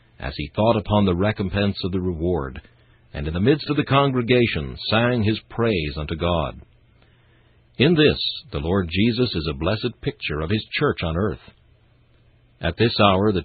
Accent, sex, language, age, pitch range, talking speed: American, male, English, 60-79, 85-115 Hz, 175 wpm